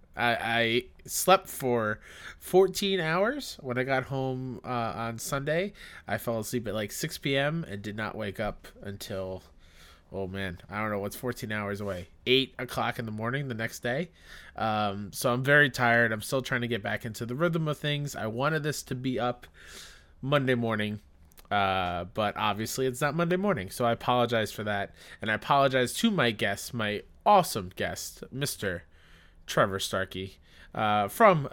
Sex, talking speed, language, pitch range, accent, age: male, 175 wpm, English, 100-130 Hz, American, 20-39